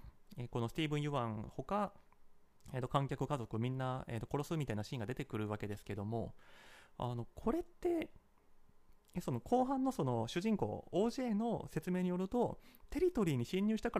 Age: 30-49